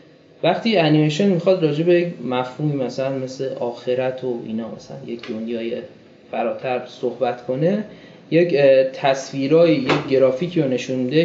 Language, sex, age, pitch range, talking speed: Persian, male, 20-39, 125-170 Hz, 115 wpm